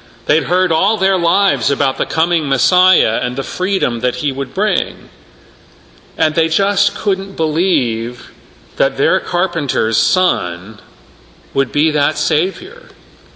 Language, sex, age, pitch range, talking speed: English, male, 40-59, 120-185 Hz, 130 wpm